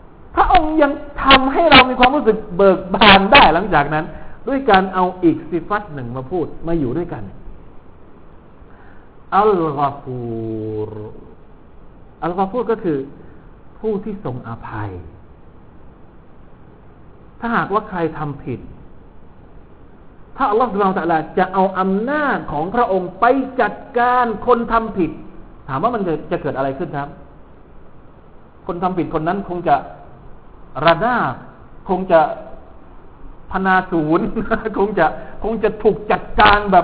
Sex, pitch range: male, 150-225 Hz